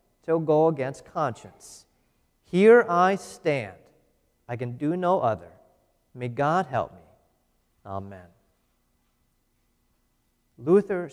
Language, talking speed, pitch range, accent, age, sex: English, 95 wpm, 140-195 Hz, American, 40-59, male